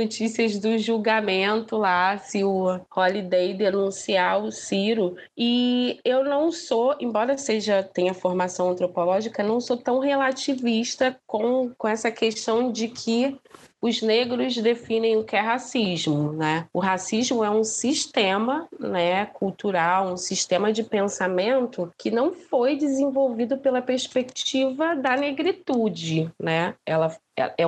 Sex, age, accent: female, 20-39, Brazilian